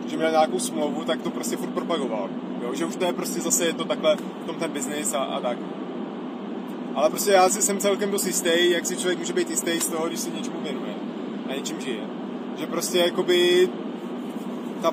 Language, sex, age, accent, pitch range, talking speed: Czech, male, 30-49, native, 180-245 Hz, 210 wpm